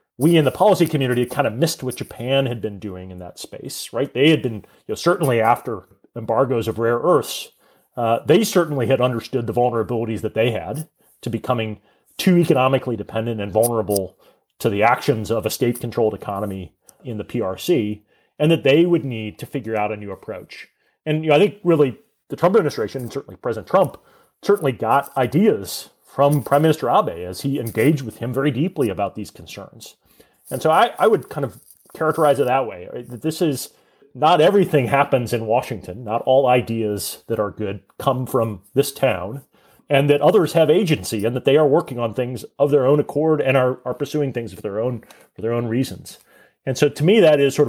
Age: 30-49